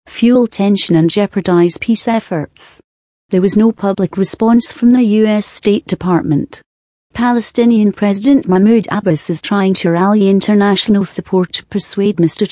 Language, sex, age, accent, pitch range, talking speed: English, female, 40-59, British, 180-220 Hz, 140 wpm